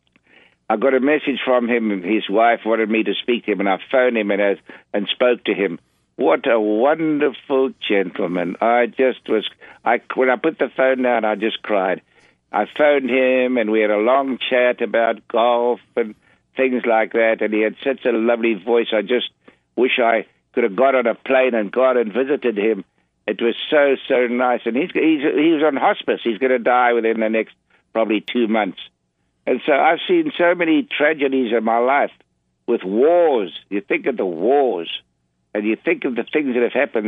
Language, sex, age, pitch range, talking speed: English, male, 60-79, 110-140 Hz, 200 wpm